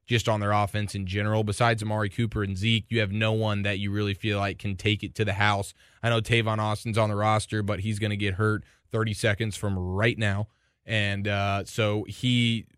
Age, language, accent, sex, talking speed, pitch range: 20-39, English, American, male, 225 wpm, 105-125 Hz